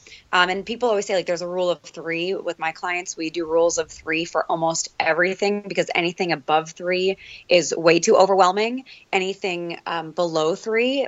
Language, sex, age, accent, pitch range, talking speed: English, female, 20-39, American, 165-195 Hz, 185 wpm